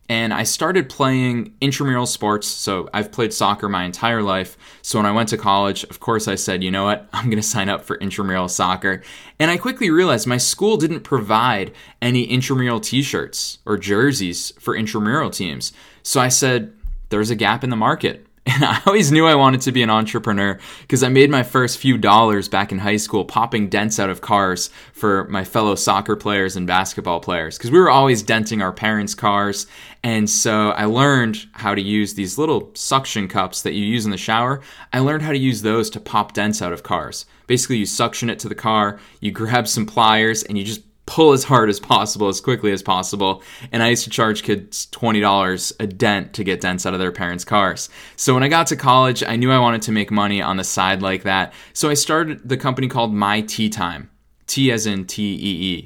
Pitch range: 100-125 Hz